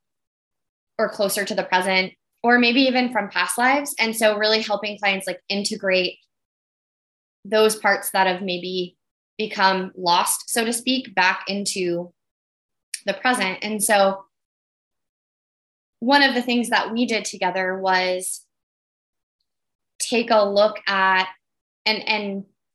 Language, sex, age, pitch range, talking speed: English, female, 10-29, 185-225 Hz, 130 wpm